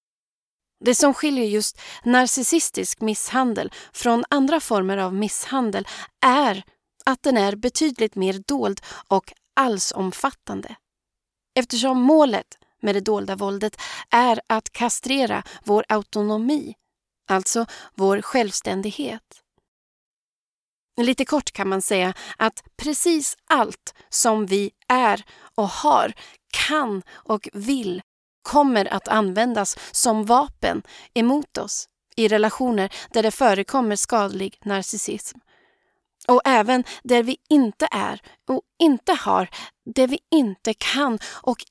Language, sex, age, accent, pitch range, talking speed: Swedish, female, 30-49, native, 205-275 Hz, 110 wpm